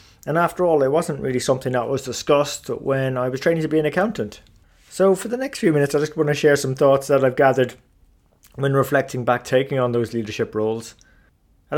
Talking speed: 220 wpm